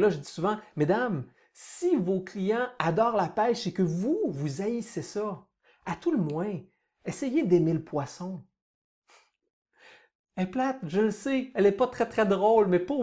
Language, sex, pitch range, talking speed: French, male, 175-230 Hz, 185 wpm